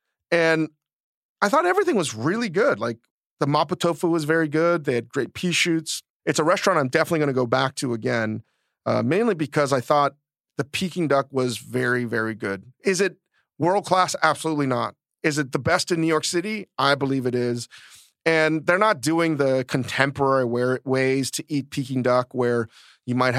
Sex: male